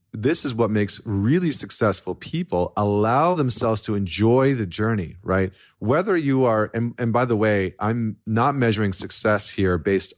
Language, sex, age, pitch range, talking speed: English, male, 40-59, 100-130 Hz, 165 wpm